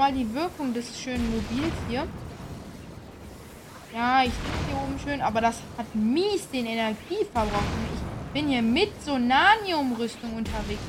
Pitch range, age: 240-295 Hz, 20-39